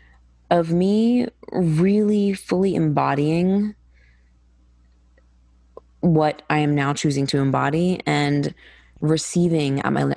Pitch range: 135-165 Hz